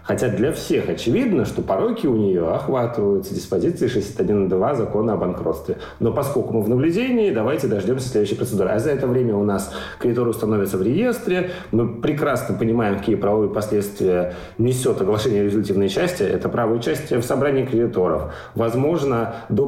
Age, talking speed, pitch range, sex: 30-49, 155 wpm, 105-135 Hz, male